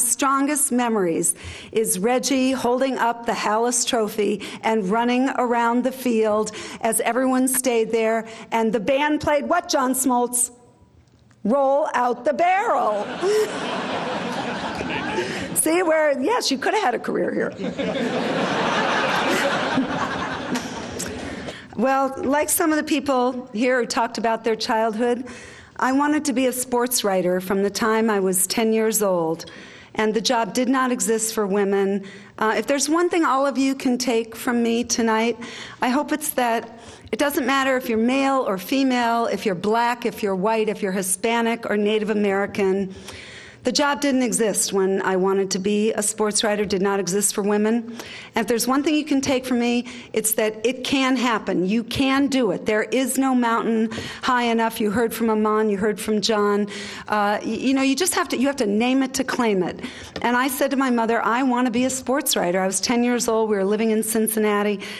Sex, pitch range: female, 215-260 Hz